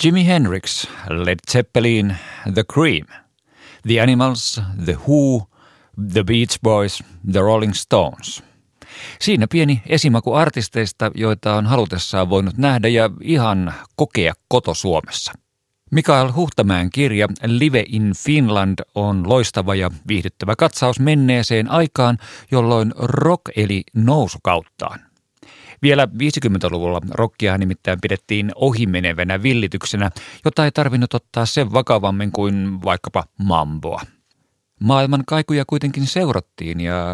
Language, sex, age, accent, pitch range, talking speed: Finnish, male, 50-69, native, 95-130 Hz, 110 wpm